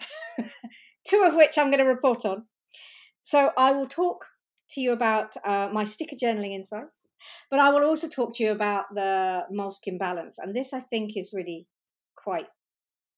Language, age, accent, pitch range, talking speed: English, 40-59, British, 205-285 Hz, 175 wpm